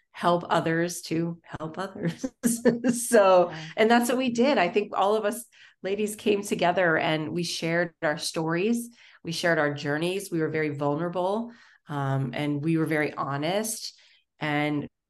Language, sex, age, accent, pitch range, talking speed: English, female, 30-49, American, 160-215 Hz, 155 wpm